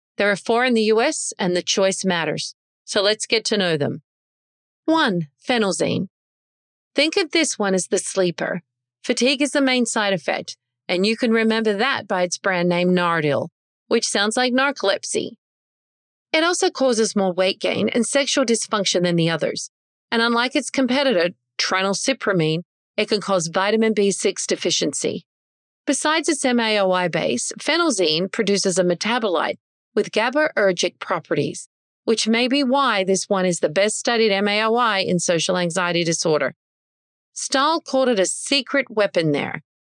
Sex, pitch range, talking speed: female, 185-250 Hz, 150 wpm